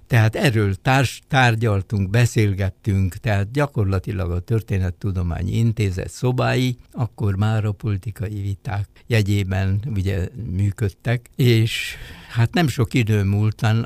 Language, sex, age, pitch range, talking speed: Hungarian, male, 60-79, 95-110 Hz, 105 wpm